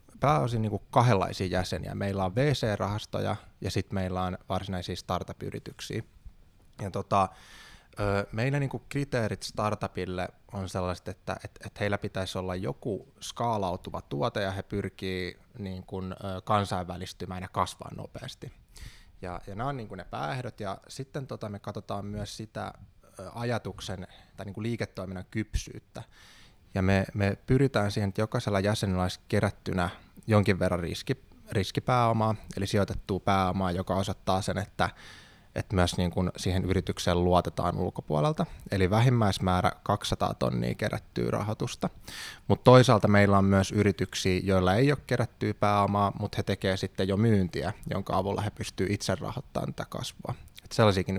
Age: 20-39